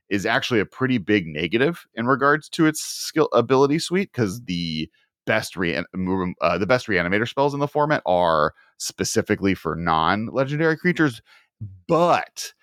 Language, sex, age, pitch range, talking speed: English, male, 30-49, 90-115 Hz, 150 wpm